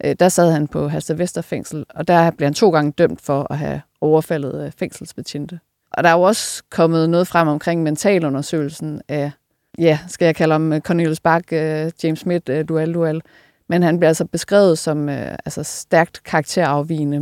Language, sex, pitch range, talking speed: Danish, female, 150-170 Hz, 165 wpm